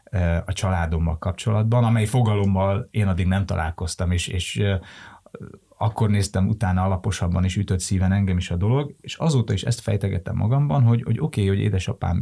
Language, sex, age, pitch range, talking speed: Hungarian, male, 30-49, 85-105 Hz, 165 wpm